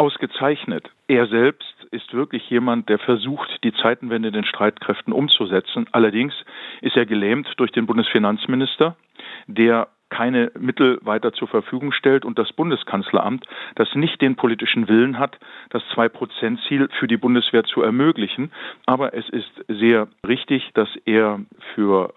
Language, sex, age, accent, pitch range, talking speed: German, male, 50-69, German, 110-140 Hz, 140 wpm